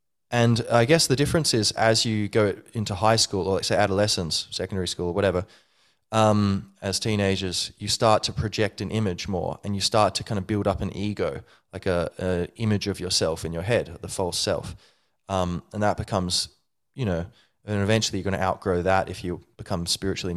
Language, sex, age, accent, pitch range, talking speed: English, male, 20-39, Australian, 95-110 Hz, 205 wpm